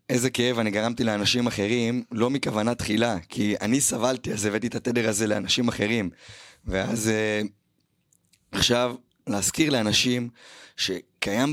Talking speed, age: 130 wpm, 20-39